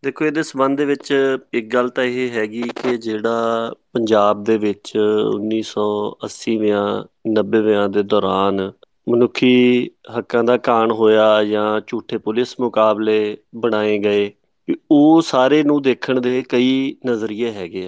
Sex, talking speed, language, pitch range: male, 130 wpm, Punjabi, 105-125 Hz